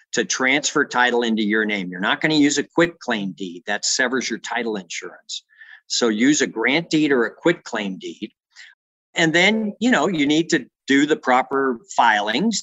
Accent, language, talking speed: American, English, 195 wpm